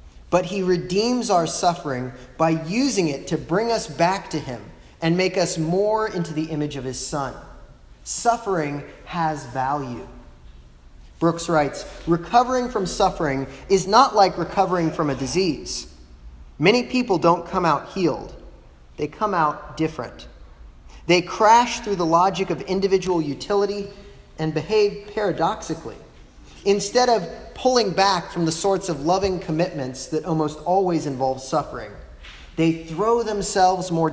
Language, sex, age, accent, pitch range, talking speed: English, male, 30-49, American, 130-190 Hz, 140 wpm